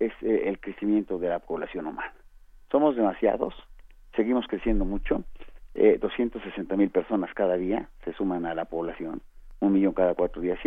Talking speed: 165 wpm